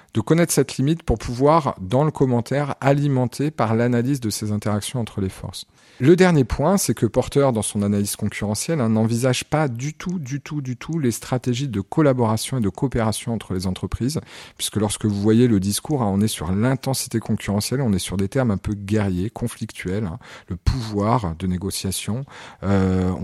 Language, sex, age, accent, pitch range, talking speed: French, male, 40-59, French, 100-130 Hz, 190 wpm